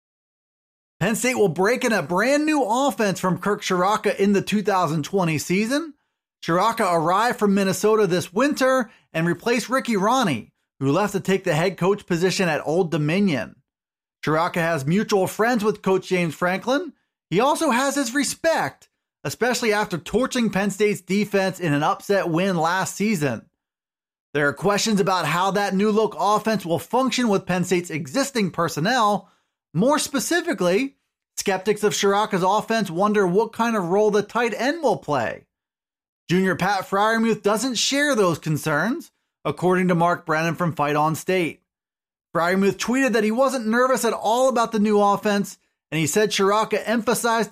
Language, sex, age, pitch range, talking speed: English, male, 30-49, 180-225 Hz, 160 wpm